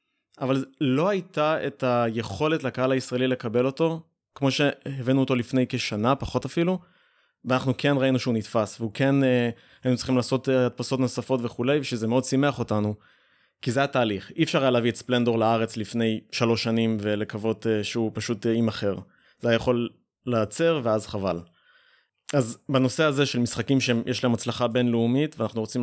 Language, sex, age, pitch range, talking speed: Hebrew, male, 20-39, 115-135 Hz, 165 wpm